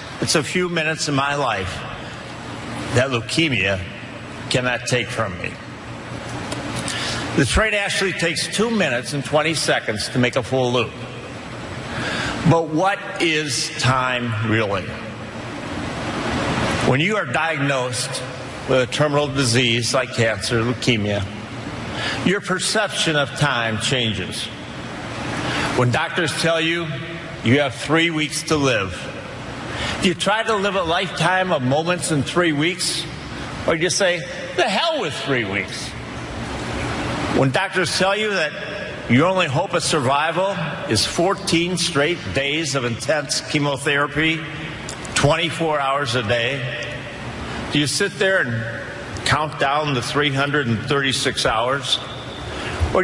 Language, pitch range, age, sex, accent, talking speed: English, 125-170 Hz, 50-69, male, American, 125 wpm